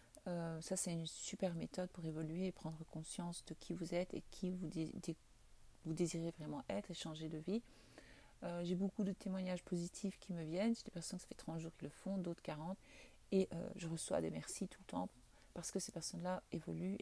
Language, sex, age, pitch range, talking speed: French, female, 40-59, 175-210 Hz, 220 wpm